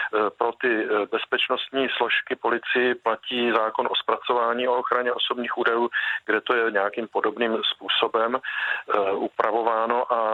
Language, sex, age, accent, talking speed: Czech, male, 40-59, native, 120 wpm